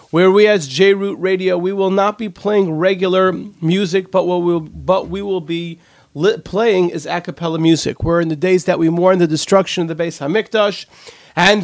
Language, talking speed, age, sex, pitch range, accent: English, 205 wpm, 40-59, male, 160-210 Hz, American